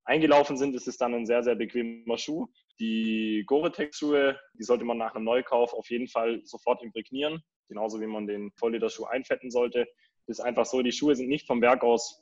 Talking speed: 200 wpm